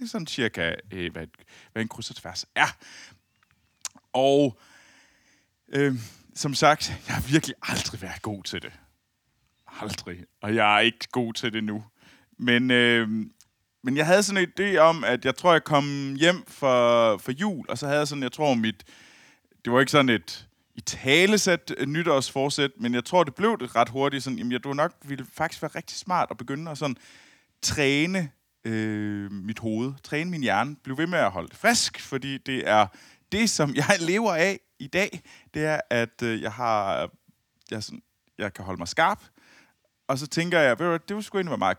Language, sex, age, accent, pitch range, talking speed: Danish, male, 30-49, native, 110-165 Hz, 190 wpm